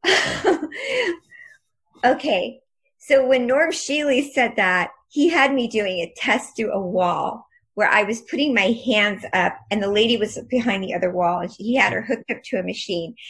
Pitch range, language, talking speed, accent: 180-255 Hz, English, 185 wpm, American